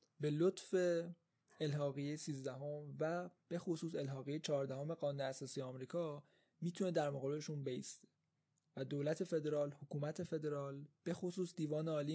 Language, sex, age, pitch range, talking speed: Persian, male, 20-39, 140-165 Hz, 135 wpm